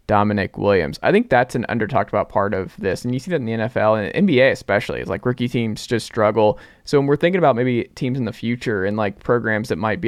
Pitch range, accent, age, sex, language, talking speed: 110-135 Hz, American, 20-39, male, English, 260 wpm